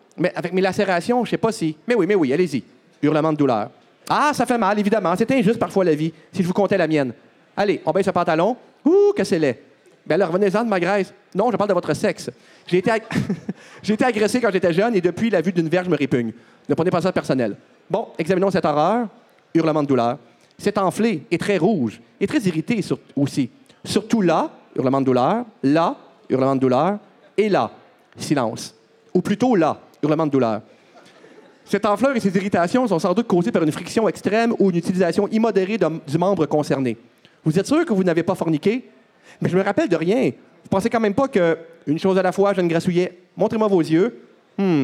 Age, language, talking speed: 40-59, French, 220 wpm